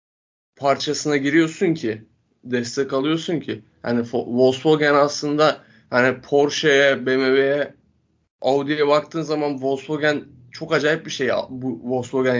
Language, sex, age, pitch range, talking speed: Turkish, male, 20-39, 125-150 Hz, 110 wpm